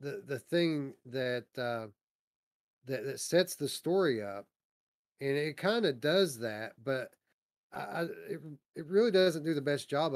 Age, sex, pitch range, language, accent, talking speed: 40-59, male, 120-160 Hz, English, American, 165 wpm